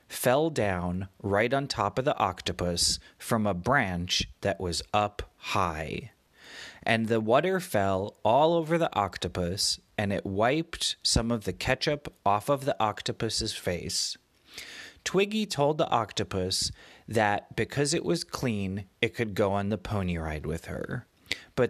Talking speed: 150 wpm